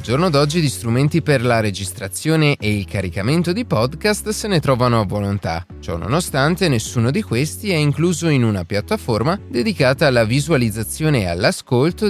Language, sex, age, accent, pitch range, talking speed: Italian, male, 30-49, native, 105-155 Hz, 160 wpm